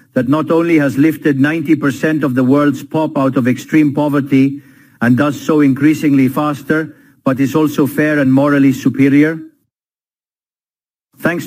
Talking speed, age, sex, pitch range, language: 140 wpm, 50-69, male, 135-160 Hz, English